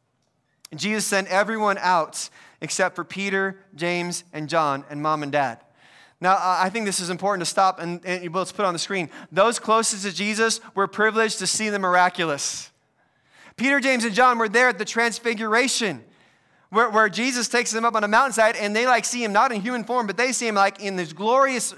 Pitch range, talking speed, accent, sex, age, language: 185-235 Hz, 205 wpm, American, male, 30-49, English